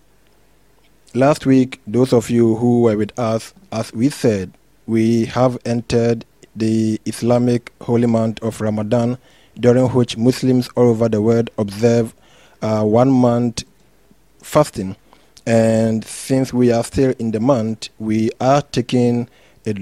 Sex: male